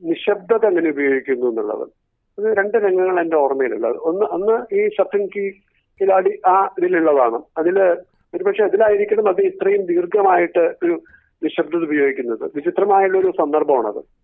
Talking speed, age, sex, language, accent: 120 wpm, 50-69, male, Malayalam, native